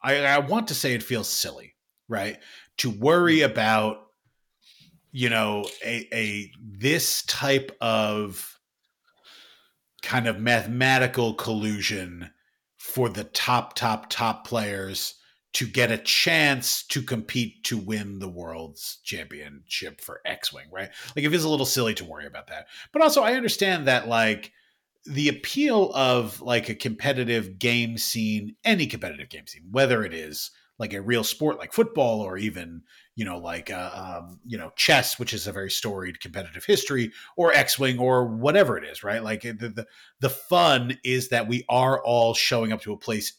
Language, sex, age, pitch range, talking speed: English, male, 30-49, 105-135 Hz, 165 wpm